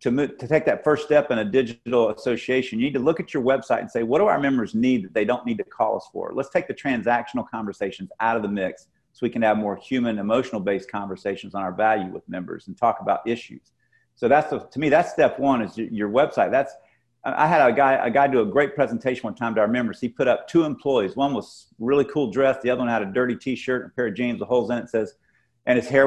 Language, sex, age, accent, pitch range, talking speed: English, male, 50-69, American, 115-135 Hz, 270 wpm